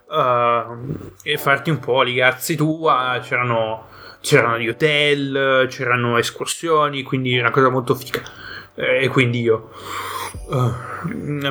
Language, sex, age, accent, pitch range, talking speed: Italian, male, 20-39, native, 120-140 Hz, 120 wpm